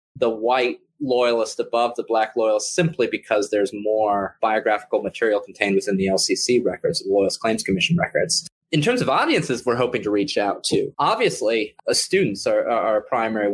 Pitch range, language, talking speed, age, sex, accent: 110-155 Hz, English, 175 wpm, 30-49, male, American